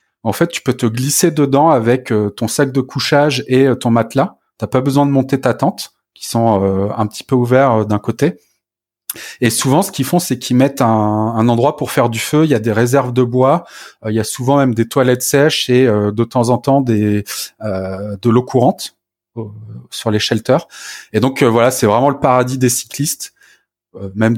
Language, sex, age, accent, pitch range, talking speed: French, male, 30-49, French, 110-135 Hz, 205 wpm